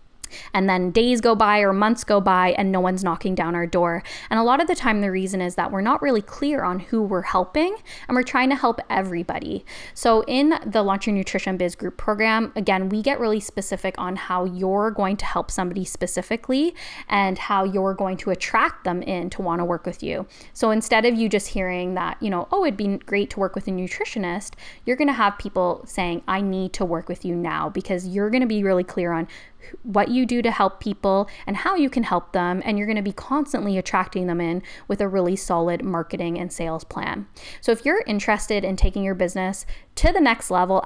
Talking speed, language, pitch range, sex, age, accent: 230 wpm, English, 180-225 Hz, female, 10-29, American